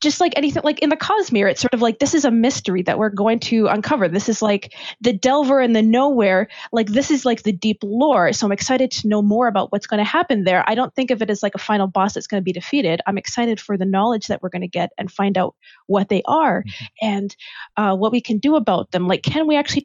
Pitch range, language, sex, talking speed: 200-250 Hz, English, female, 270 wpm